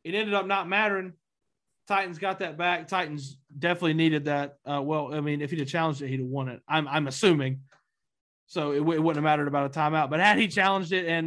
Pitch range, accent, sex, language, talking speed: 145-195 Hz, American, male, English, 235 wpm